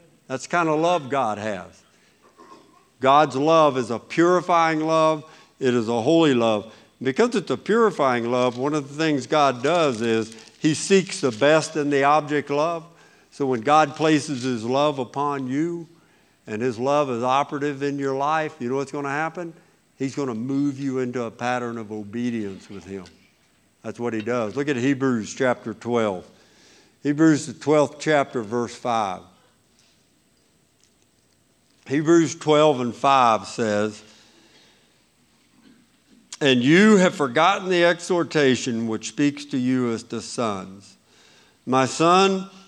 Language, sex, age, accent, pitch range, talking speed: English, male, 60-79, American, 120-155 Hz, 150 wpm